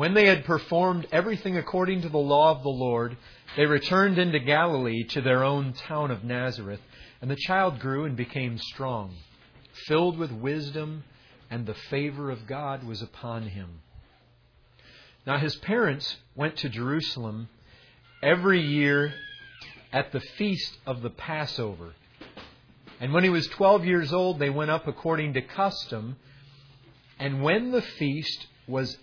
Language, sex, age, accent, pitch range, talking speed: English, male, 40-59, American, 125-170 Hz, 150 wpm